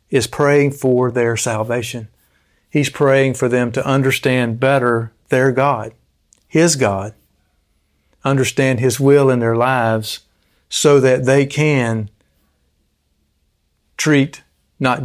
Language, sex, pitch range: English, male, 105-135 Hz